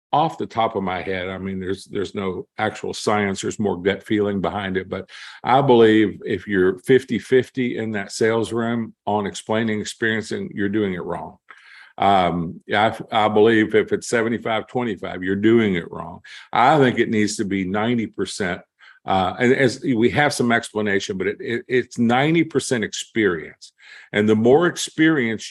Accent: American